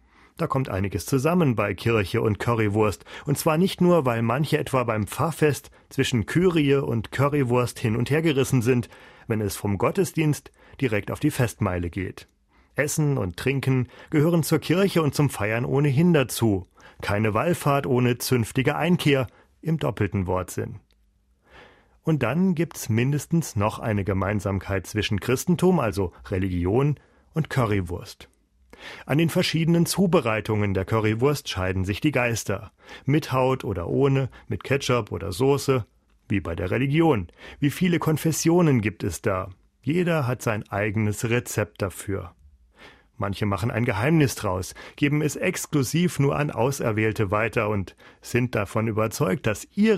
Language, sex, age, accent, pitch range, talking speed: German, male, 40-59, German, 105-145 Hz, 140 wpm